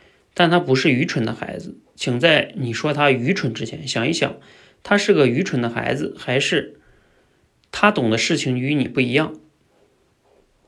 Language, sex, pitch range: Chinese, male, 120-160 Hz